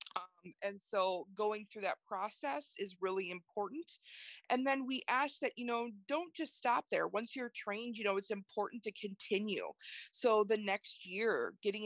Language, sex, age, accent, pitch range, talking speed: English, female, 30-49, American, 190-235 Hz, 170 wpm